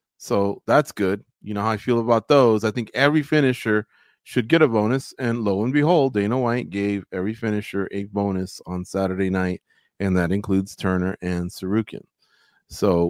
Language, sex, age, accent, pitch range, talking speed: English, male, 30-49, American, 100-140 Hz, 180 wpm